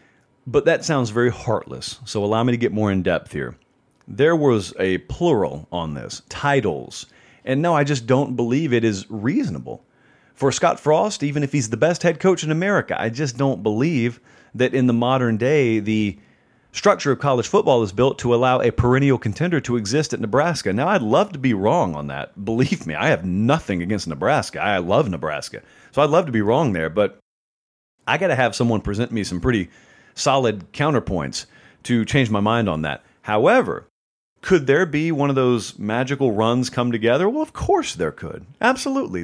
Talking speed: 195 wpm